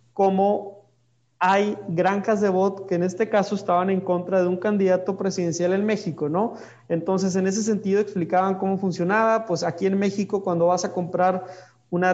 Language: Spanish